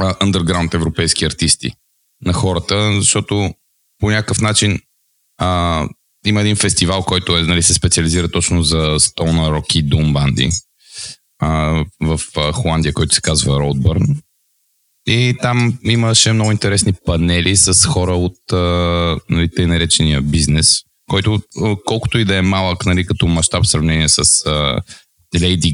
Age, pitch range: 20-39, 85-110 Hz